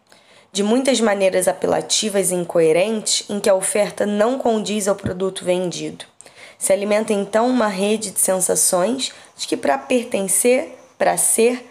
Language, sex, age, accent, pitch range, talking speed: Portuguese, female, 20-39, Brazilian, 190-235 Hz, 145 wpm